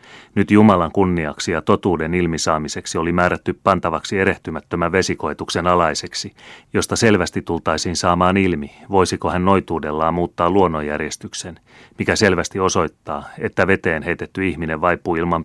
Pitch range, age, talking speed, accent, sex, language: 80-95 Hz, 30-49, 120 wpm, native, male, Finnish